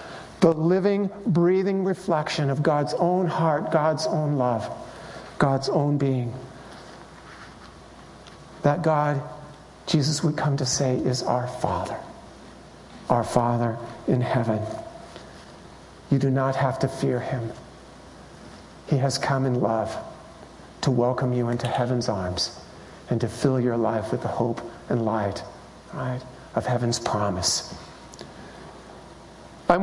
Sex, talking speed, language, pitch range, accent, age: male, 120 wpm, English, 130-165 Hz, American, 50-69